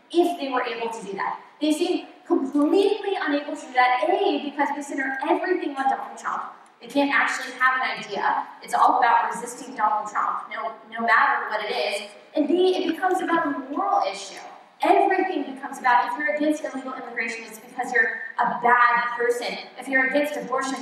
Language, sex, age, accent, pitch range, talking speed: English, female, 20-39, American, 235-295 Hz, 190 wpm